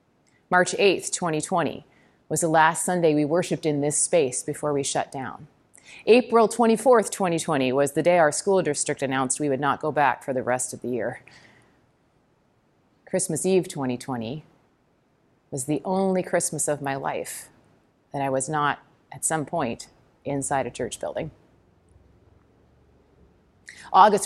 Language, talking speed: English, 145 wpm